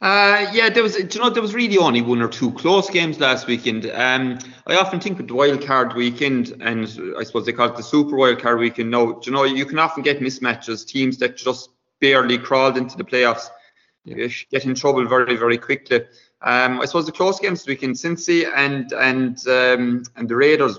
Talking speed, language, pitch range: 215 wpm, English, 120-150 Hz